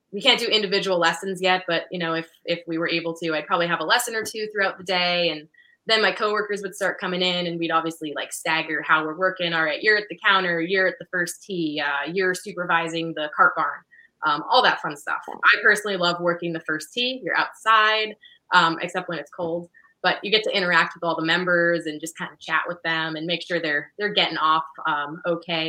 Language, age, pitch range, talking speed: English, 20-39, 165-195 Hz, 240 wpm